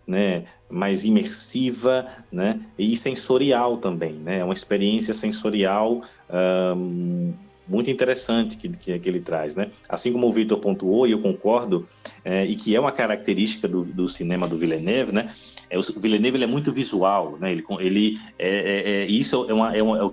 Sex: male